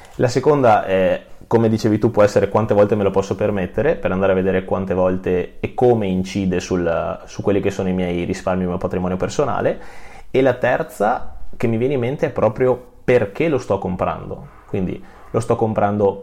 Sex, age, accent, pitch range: male, 20-39, native, 100-120 Hz